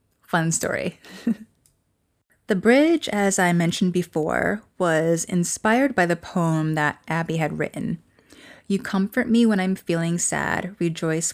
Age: 20-39